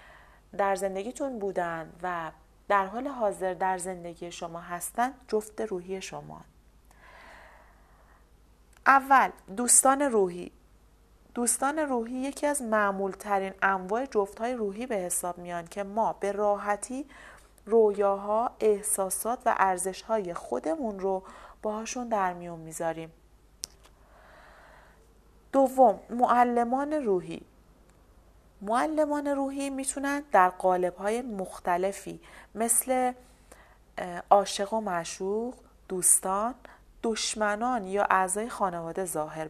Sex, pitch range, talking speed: female, 185-240 Hz, 95 wpm